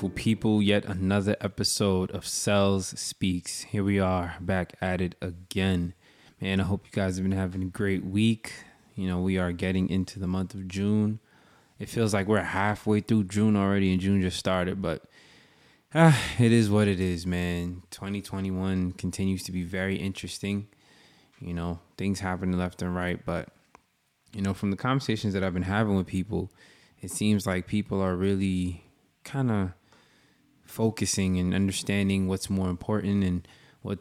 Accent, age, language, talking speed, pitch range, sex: American, 20-39, English, 170 wpm, 90-100 Hz, male